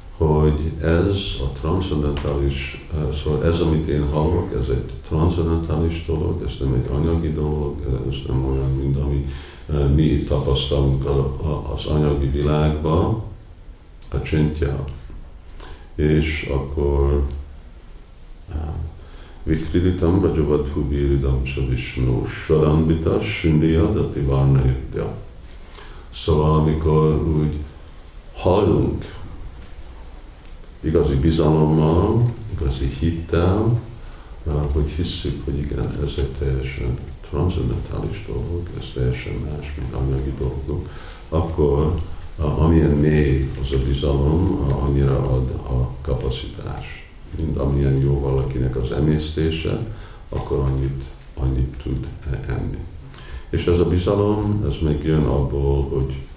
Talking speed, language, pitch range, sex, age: 100 wpm, Hungarian, 70-80 Hz, male, 50-69